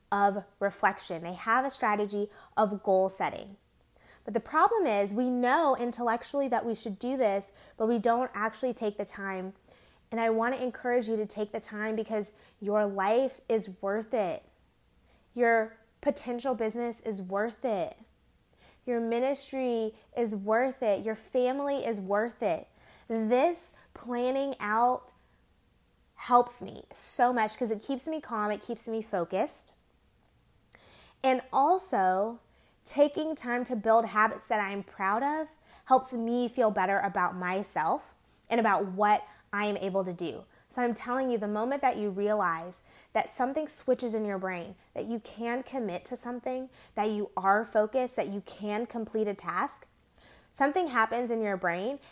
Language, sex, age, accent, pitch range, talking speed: English, female, 20-39, American, 205-250 Hz, 155 wpm